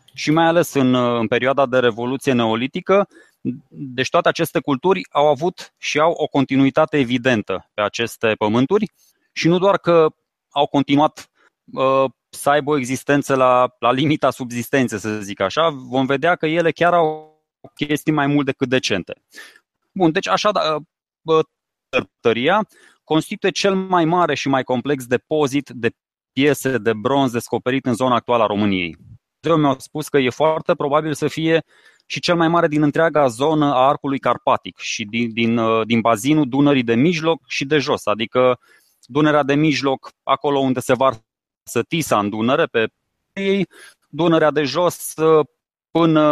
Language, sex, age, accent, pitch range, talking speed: Romanian, male, 20-39, native, 125-155 Hz, 160 wpm